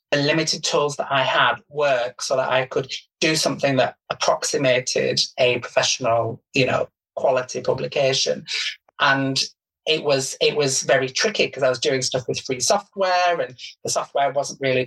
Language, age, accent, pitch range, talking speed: English, 30-49, British, 130-165 Hz, 165 wpm